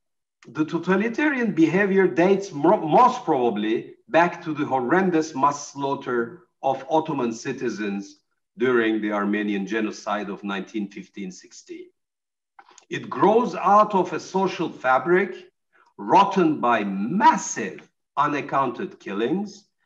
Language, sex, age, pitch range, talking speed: Turkish, male, 50-69, 125-195 Hz, 100 wpm